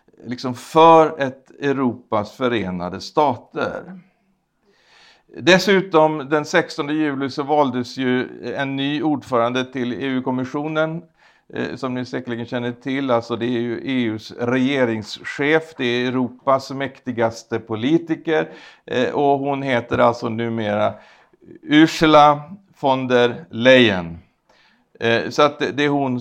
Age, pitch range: 60-79, 120-150 Hz